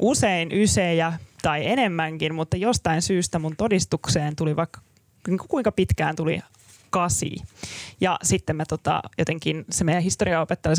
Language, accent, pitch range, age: Finnish, native, 160-195 Hz, 20-39